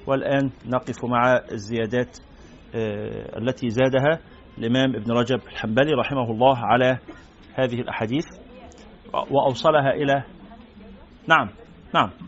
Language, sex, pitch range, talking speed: Arabic, male, 115-155 Hz, 95 wpm